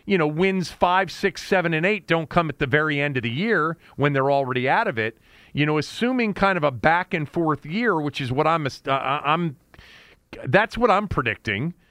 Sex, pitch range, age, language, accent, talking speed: male, 130-195 Hz, 40-59, English, American, 215 wpm